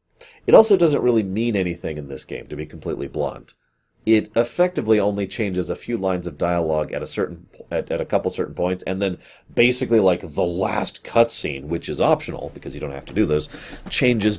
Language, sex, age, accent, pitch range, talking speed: English, male, 30-49, American, 85-120 Hz, 210 wpm